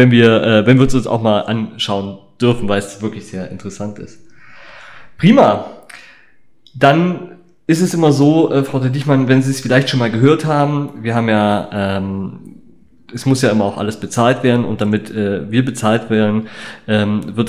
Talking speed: 180 wpm